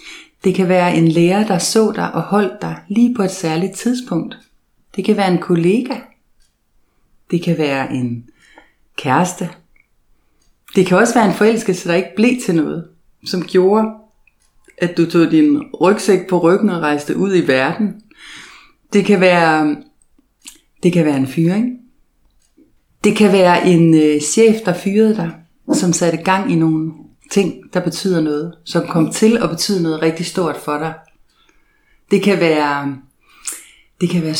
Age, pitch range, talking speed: 30-49, 170-230 Hz, 160 wpm